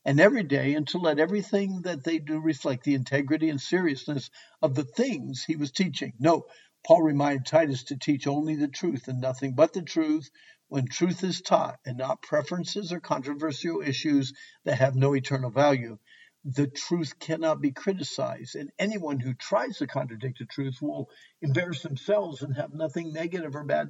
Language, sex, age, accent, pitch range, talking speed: English, male, 60-79, American, 135-170 Hz, 180 wpm